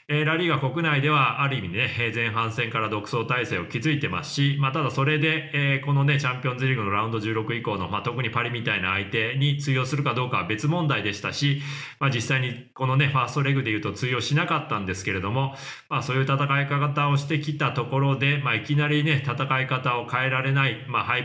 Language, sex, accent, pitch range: Japanese, male, native, 120-150 Hz